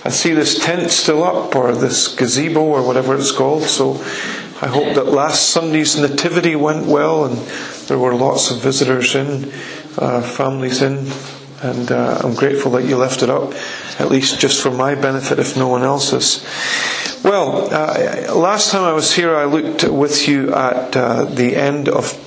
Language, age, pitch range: English, 40-59, 130-145 Hz